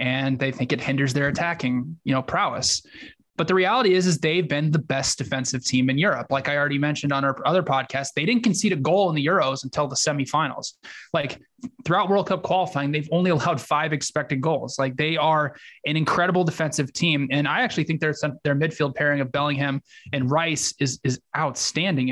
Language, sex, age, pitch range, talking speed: English, male, 20-39, 135-155 Hz, 205 wpm